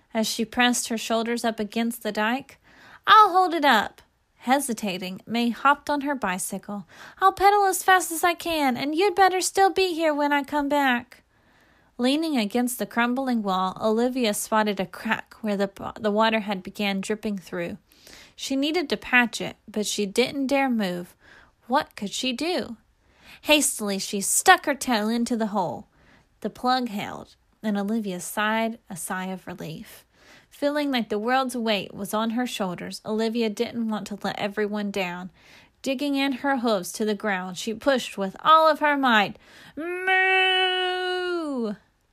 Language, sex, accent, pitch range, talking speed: English, female, American, 210-290 Hz, 165 wpm